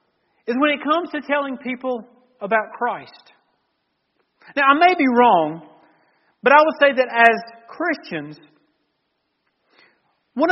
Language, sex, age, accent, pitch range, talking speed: English, male, 40-59, American, 225-285 Hz, 125 wpm